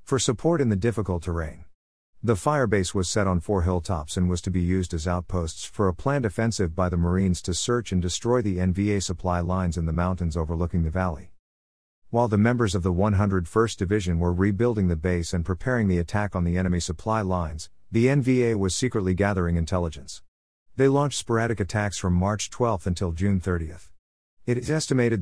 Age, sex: 50-69, male